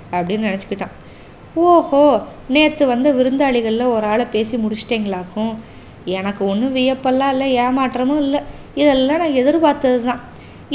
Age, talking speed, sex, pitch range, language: 20-39, 110 wpm, female, 210-280 Hz, Tamil